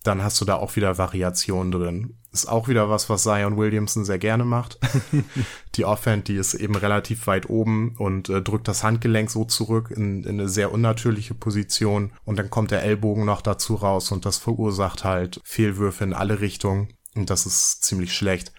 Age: 30-49